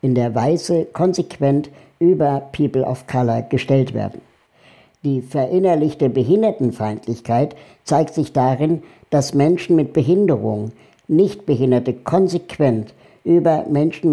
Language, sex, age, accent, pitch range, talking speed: German, male, 60-79, German, 125-155 Hz, 105 wpm